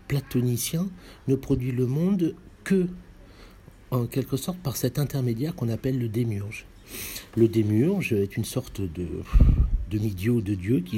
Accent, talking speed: French, 140 wpm